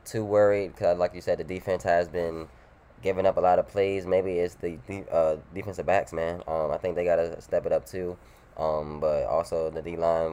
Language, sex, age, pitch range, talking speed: English, male, 10-29, 80-90 Hz, 220 wpm